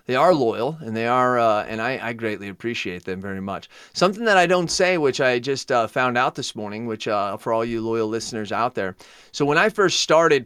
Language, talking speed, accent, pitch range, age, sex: English, 240 wpm, American, 115-145 Hz, 30-49, male